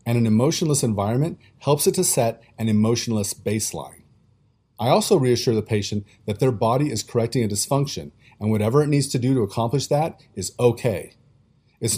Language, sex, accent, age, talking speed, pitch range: English, male, American, 40-59, 175 wpm, 105-130 Hz